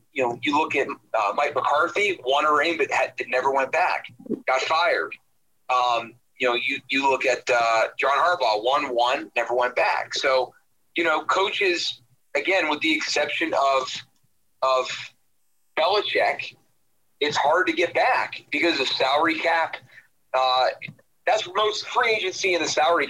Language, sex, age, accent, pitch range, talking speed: English, male, 30-49, American, 130-195 Hz, 160 wpm